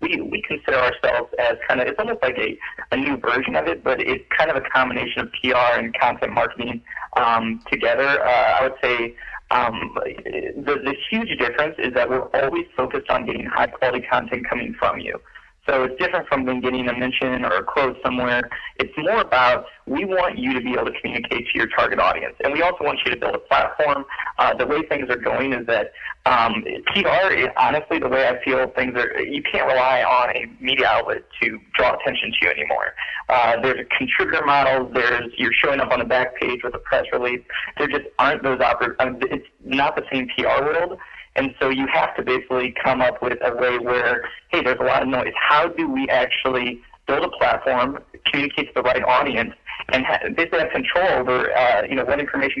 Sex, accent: male, American